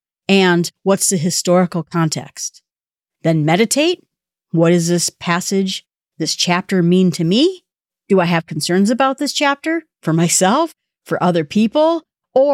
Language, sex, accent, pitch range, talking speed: English, female, American, 165-220 Hz, 140 wpm